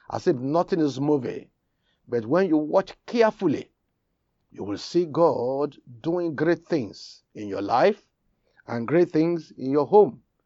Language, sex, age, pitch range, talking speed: English, male, 50-69, 130-200 Hz, 150 wpm